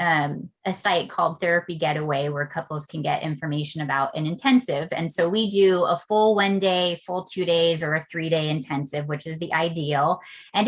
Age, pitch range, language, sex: 30-49, 155-195 Hz, English, female